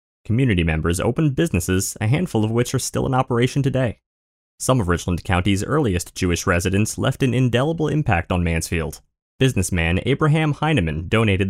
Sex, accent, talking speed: male, American, 155 wpm